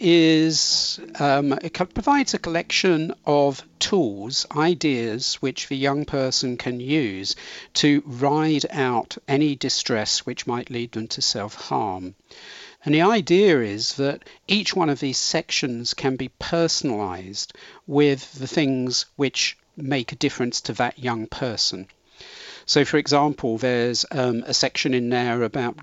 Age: 50-69